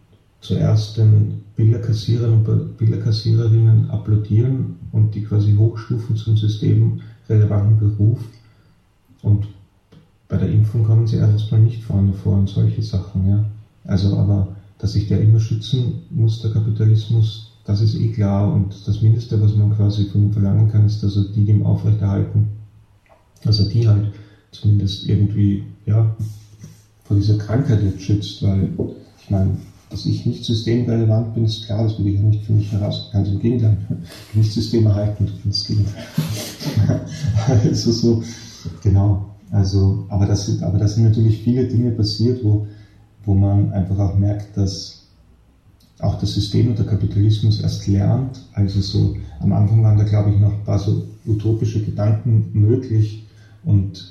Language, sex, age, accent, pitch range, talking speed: German, male, 40-59, German, 100-110 Hz, 155 wpm